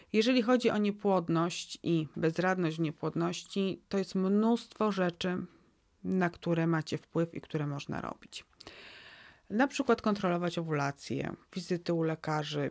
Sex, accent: female, native